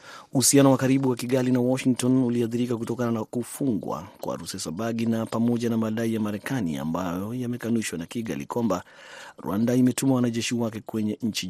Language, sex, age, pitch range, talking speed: Swahili, male, 30-49, 105-125 Hz, 160 wpm